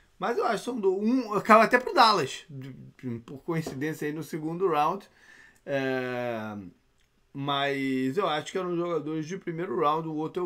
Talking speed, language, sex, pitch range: 170 wpm, Portuguese, male, 130-195 Hz